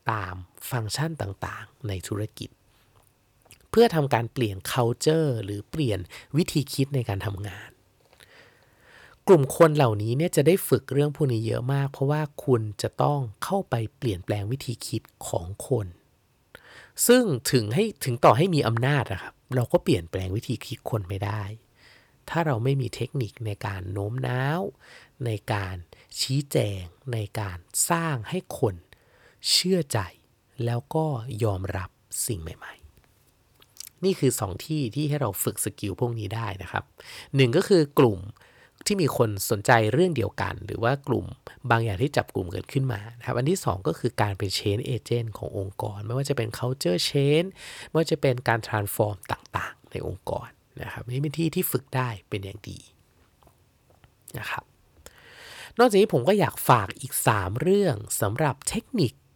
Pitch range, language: 105-140 Hz, English